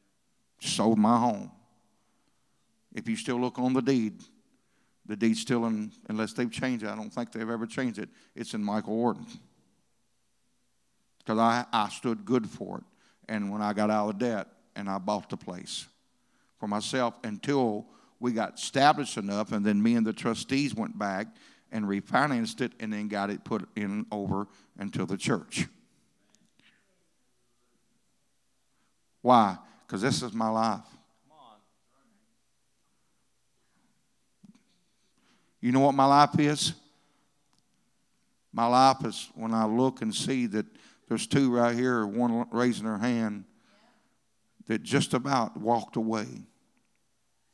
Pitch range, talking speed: 105-125 Hz, 140 wpm